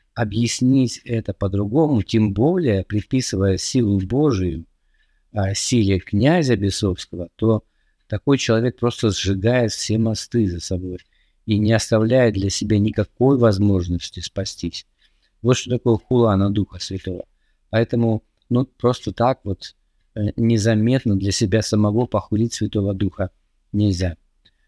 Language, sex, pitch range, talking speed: Russian, male, 95-115 Hz, 115 wpm